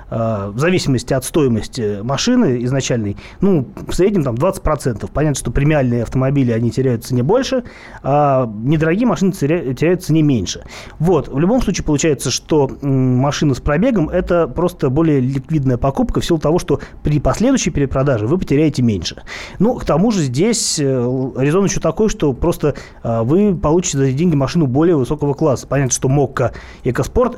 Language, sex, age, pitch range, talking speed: Russian, male, 30-49, 130-170 Hz, 160 wpm